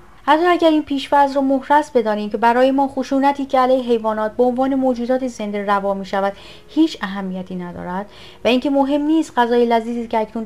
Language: Persian